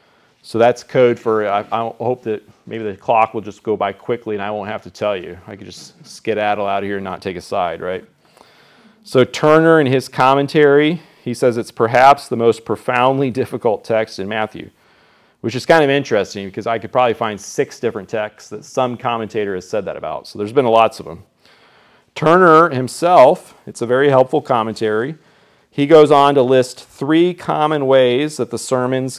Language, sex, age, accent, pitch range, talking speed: English, male, 40-59, American, 110-135 Hz, 195 wpm